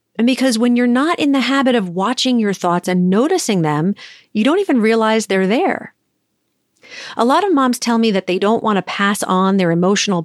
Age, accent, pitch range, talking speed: 40-59, American, 190-245 Hz, 210 wpm